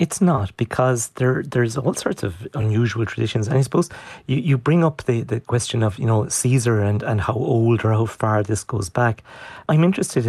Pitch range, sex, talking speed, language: 110-130 Hz, male, 210 wpm, English